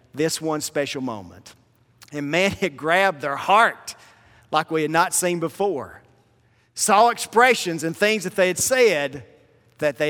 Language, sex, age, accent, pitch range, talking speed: English, male, 40-59, American, 155-225 Hz, 155 wpm